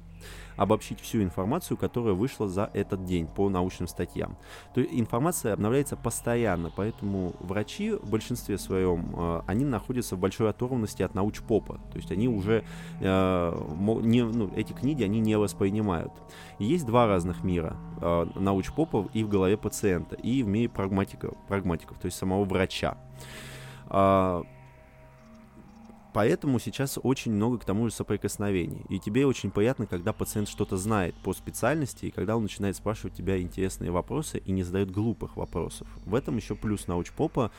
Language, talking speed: Russian, 155 wpm